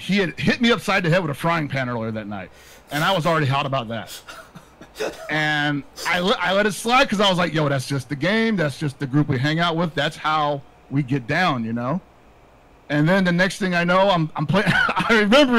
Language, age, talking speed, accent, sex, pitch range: English, 50-69, 230 wpm, American, male, 150-220 Hz